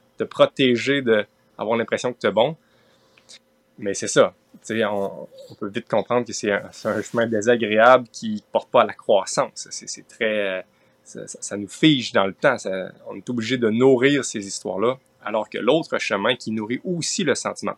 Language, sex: French, male